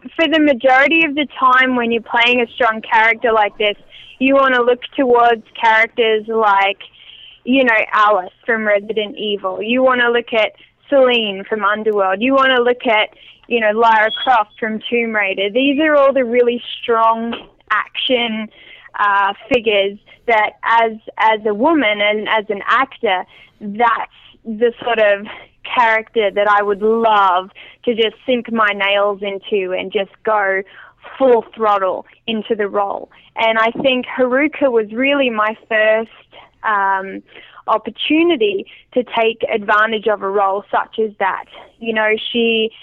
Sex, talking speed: female, 155 wpm